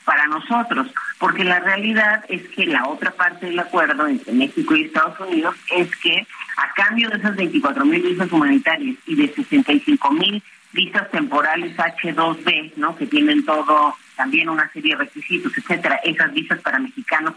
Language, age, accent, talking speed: Spanish, 40-59, Mexican, 160 wpm